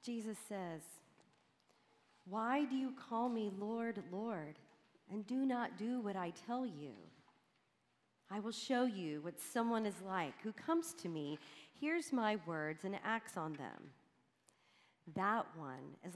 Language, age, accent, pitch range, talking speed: English, 40-59, American, 175-235 Hz, 145 wpm